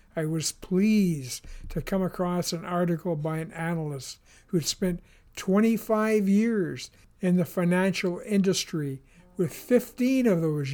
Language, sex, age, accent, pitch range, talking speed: English, male, 60-79, American, 165-205 Hz, 130 wpm